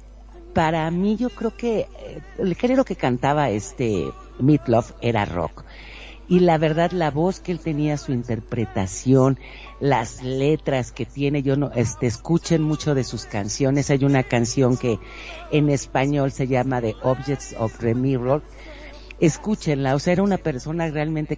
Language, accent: Spanish, Mexican